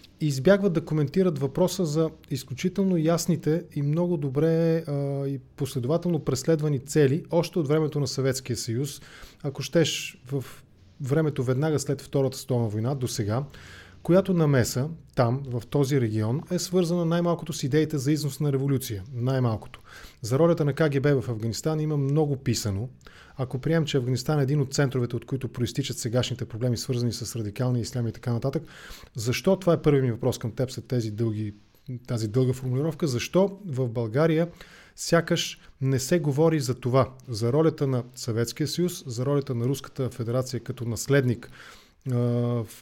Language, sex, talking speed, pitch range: English, male, 155 wpm, 125-155 Hz